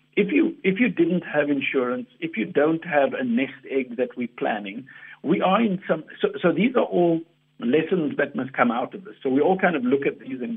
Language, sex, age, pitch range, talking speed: English, male, 60-79, 135-215 Hz, 245 wpm